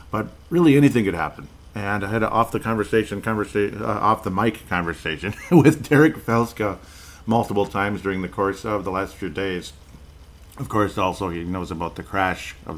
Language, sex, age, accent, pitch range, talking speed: English, male, 50-69, American, 90-115 Hz, 190 wpm